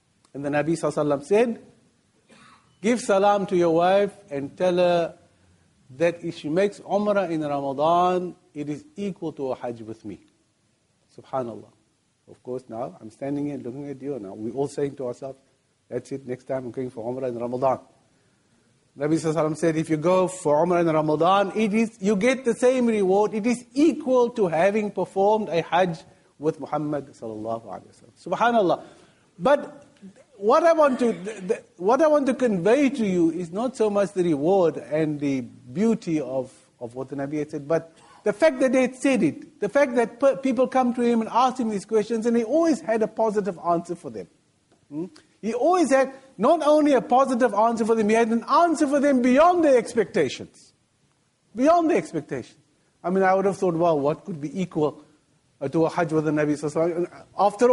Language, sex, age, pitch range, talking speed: English, male, 50-69, 150-230 Hz, 190 wpm